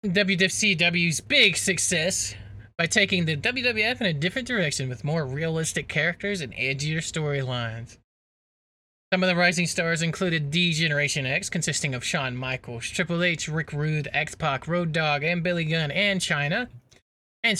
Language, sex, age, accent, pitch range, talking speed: English, male, 20-39, American, 145-195 Hz, 155 wpm